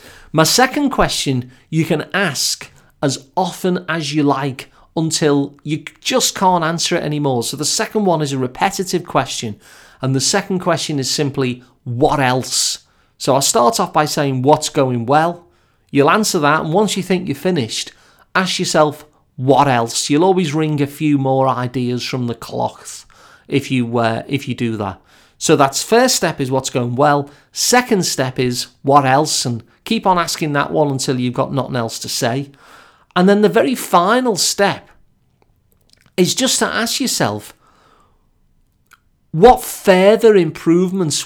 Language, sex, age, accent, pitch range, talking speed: English, male, 40-59, British, 135-180 Hz, 165 wpm